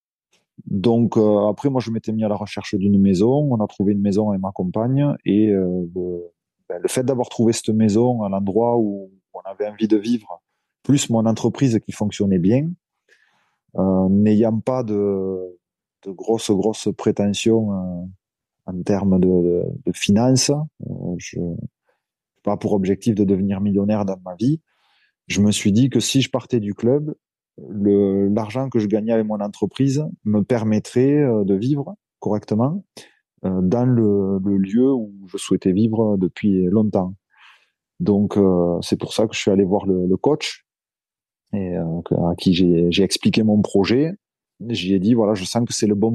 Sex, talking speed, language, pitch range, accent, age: male, 170 wpm, French, 100-115 Hz, French, 20-39